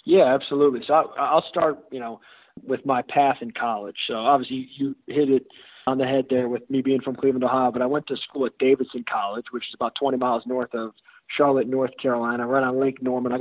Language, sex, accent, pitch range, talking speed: English, male, American, 125-145 Hz, 230 wpm